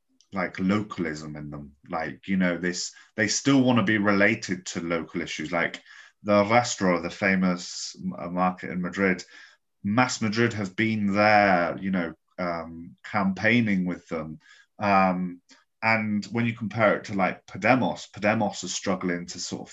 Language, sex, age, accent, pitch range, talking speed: English, male, 30-49, British, 90-120 Hz, 155 wpm